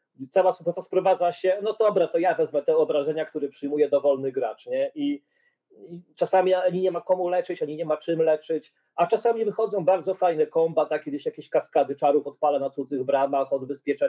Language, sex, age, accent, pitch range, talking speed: Polish, male, 40-59, native, 150-235 Hz, 190 wpm